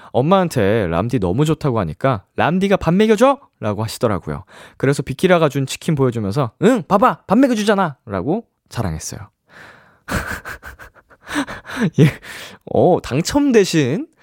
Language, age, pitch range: Korean, 20-39, 110-165 Hz